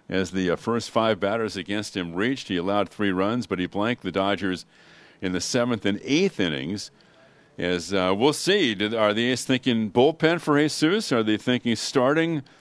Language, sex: English, male